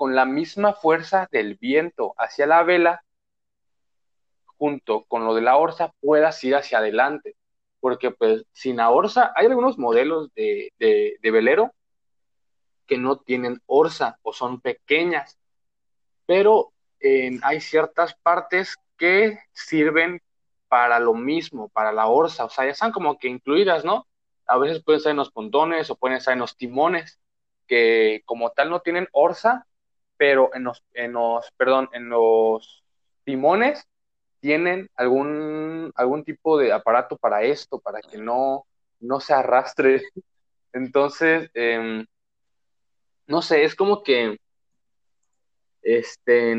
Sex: male